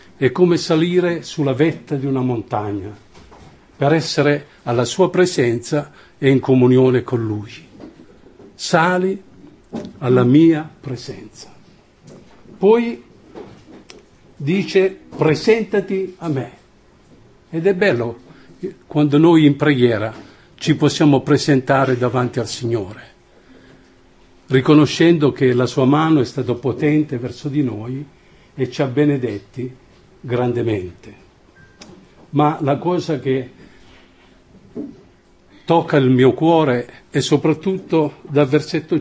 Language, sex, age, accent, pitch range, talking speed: Italian, male, 50-69, native, 125-160 Hz, 105 wpm